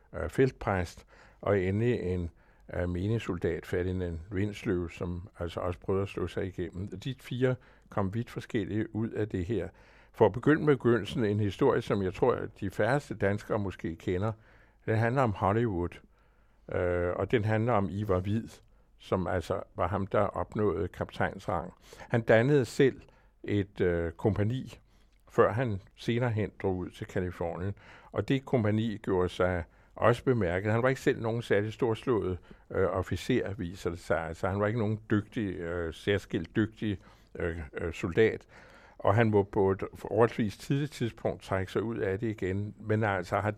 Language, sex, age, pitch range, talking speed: Danish, male, 60-79, 95-115 Hz, 165 wpm